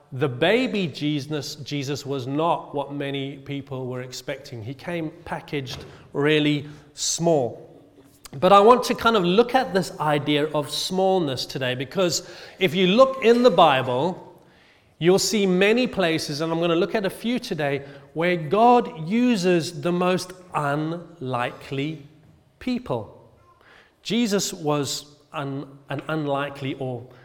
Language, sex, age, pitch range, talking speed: English, male, 30-49, 140-180 Hz, 135 wpm